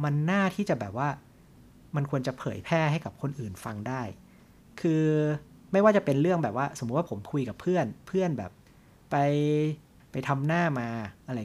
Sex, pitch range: male, 120-150 Hz